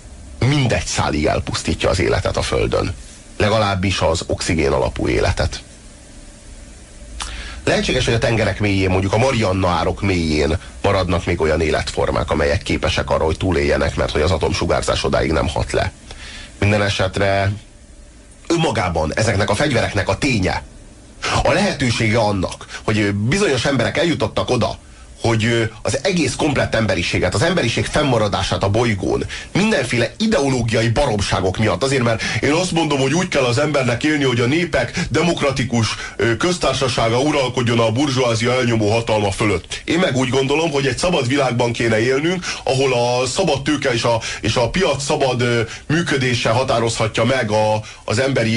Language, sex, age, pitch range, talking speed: Hungarian, male, 30-49, 100-130 Hz, 140 wpm